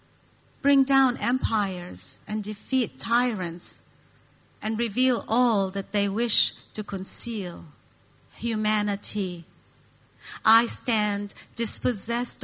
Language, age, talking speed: English, 40-59, 85 wpm